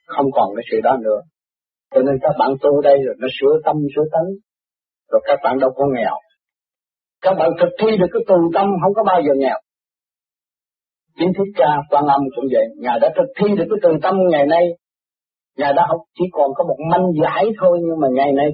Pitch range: 140-210 Hz